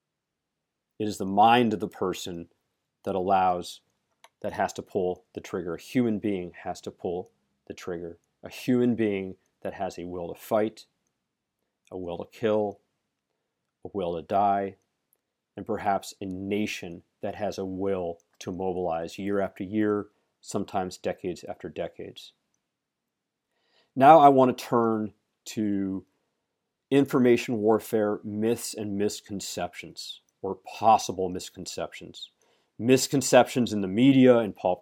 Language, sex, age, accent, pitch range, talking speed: English, male, 40-59, American, 95-120 Hz, 130 wpm